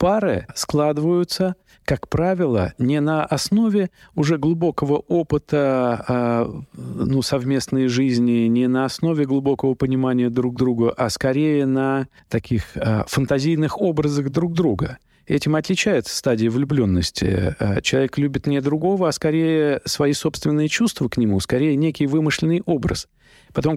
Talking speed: 120 wpm